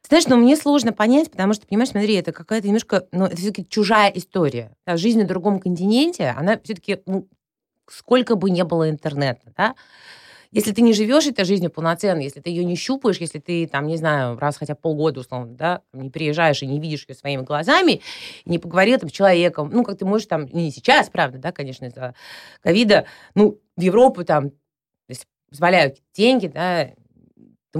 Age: 30-49